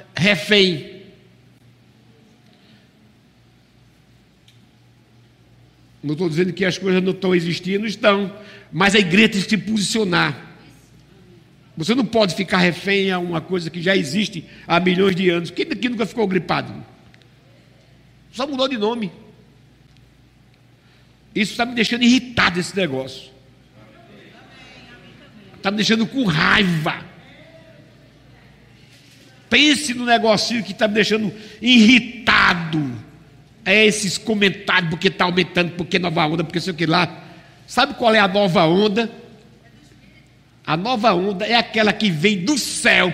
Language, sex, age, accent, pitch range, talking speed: Portuguese, male, 60-79, Brazilian, 165-230 Hz, 125 wpm